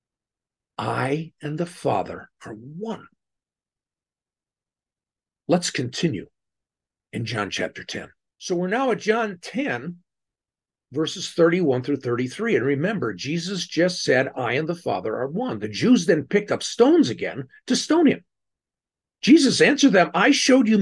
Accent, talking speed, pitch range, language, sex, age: American, 140 wpm, 140-235 Hz, English, male, 50-69